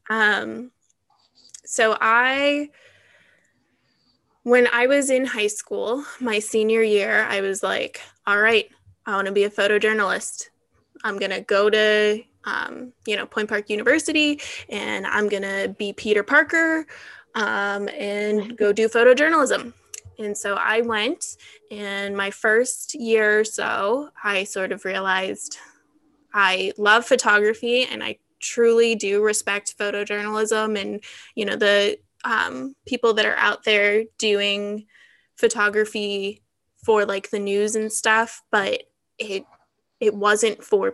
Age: 20-39